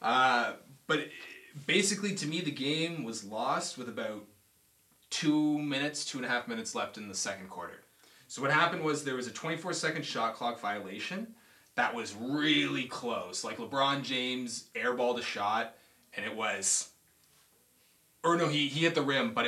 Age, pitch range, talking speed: 20-39, 115-160 Hz, 175 wpm